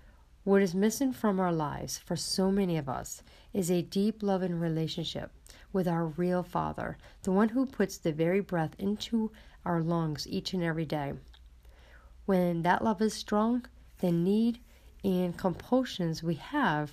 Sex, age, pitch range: female, 40-59, 165-205 Hz